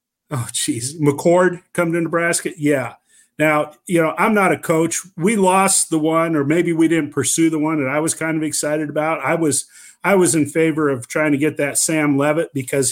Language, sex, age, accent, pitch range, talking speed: English, male, 50-69, American, 140-175 Hz, 215 wpm